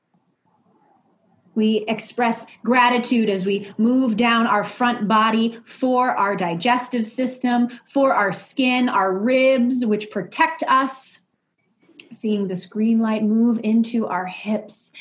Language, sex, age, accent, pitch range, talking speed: English, female, 30-49, American, 200-230 Hz, 120 wpm